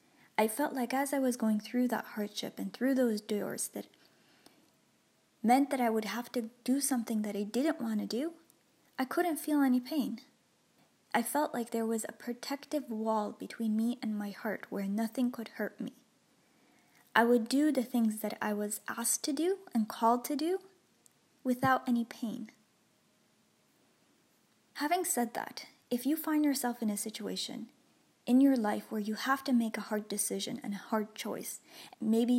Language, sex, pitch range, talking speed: English, female, 220-270 Hz, 175 wpm